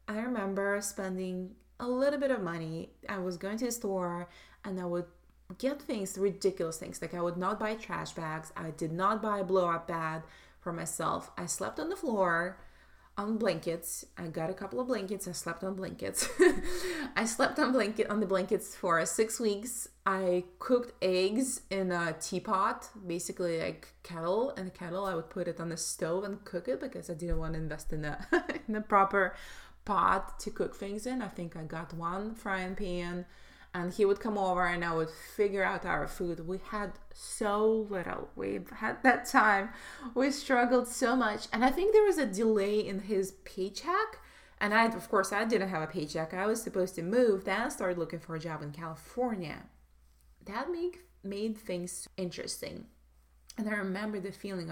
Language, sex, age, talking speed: English, female, 20-39, 190 wpm